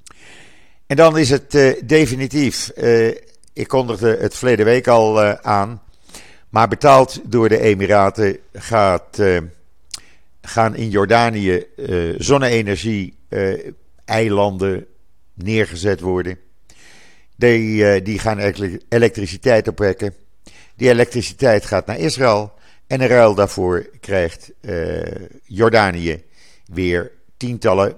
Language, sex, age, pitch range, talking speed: Dutch, male, 50-69, 90-115 Hz, 105 wpm